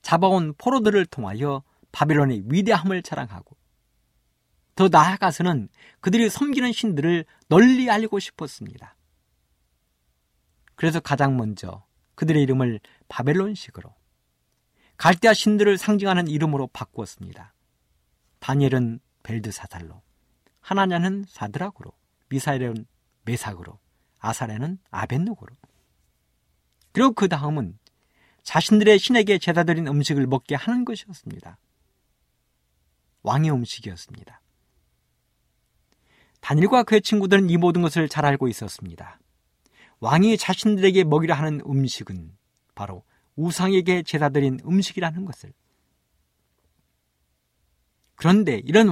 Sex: male